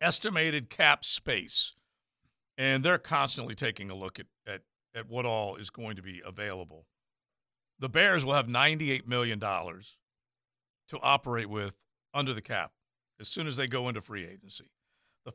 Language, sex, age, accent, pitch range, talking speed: English, male, 50-69, American, 110-150 Hz, 155 wpm